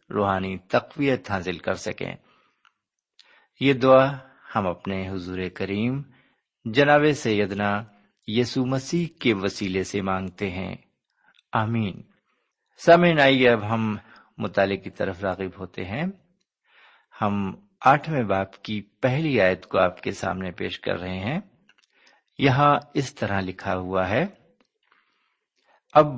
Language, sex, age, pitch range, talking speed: Urdu, male, 50-69, 100-145 Hz, 115 wpm